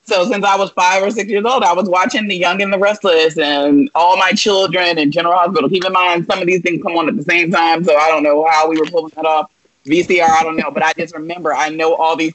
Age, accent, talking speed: 30-49, American, 285 wpm